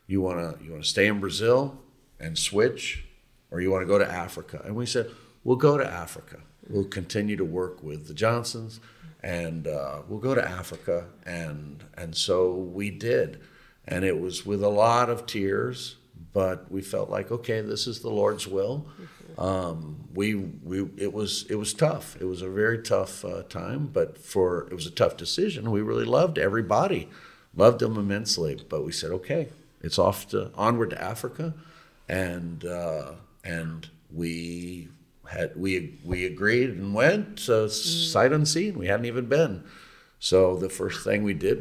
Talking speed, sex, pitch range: 175 wpm, male, 85-115 Hz